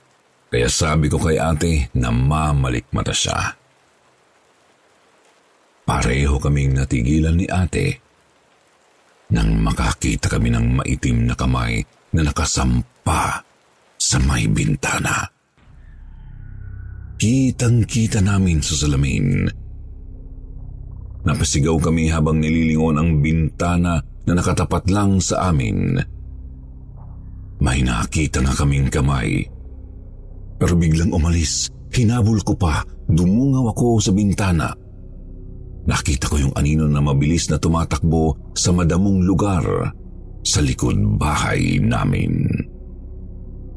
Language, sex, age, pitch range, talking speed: Filipino, male, 50-69, 75-100 Hz, 95 wpm